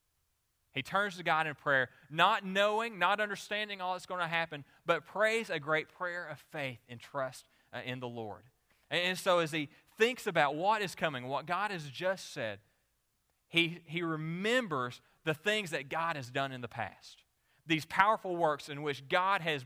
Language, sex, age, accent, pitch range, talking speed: English, male, 30-49, American, 140-190 Hz, 185 wpm